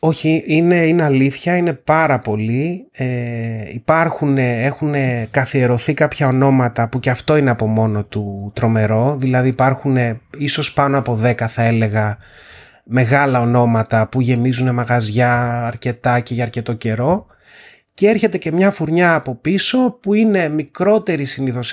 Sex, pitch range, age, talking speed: male, 125-155 Hz, 30-49, 135 wpm